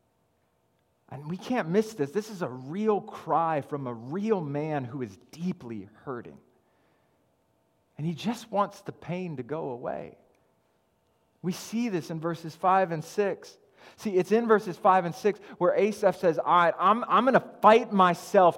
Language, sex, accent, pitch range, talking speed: English, male, American, 160-215 Hz, 170 wpm